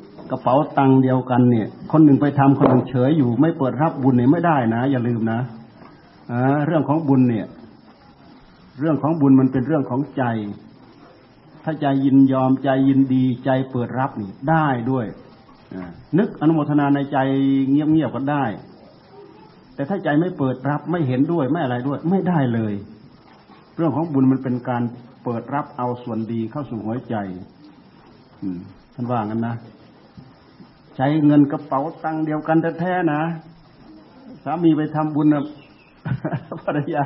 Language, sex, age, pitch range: Thai, male, 60-79, 130-160 Hz